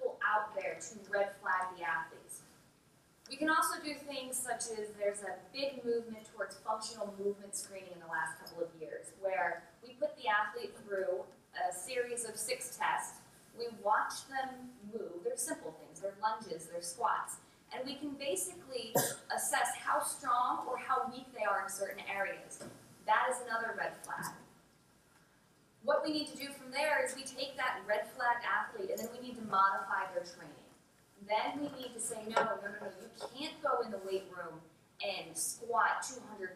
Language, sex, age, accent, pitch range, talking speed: English, female, 20-39, American, 195-260 Hz, 180 wpm